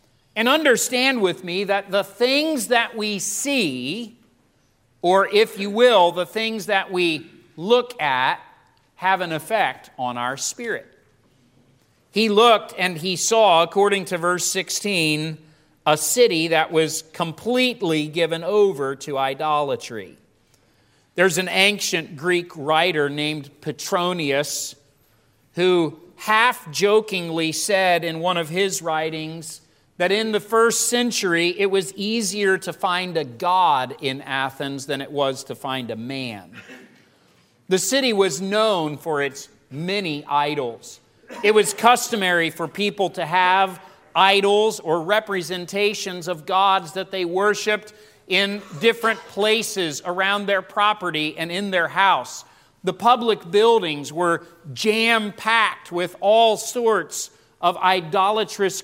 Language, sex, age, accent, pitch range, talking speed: English, male, 40-59, American, 155-210 Hz, 125 wpm